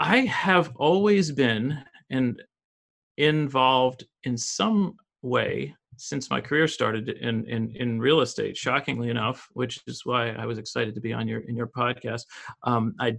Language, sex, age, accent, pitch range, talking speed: English, male, 40-59, American, 120-140 Hz, 165 wpm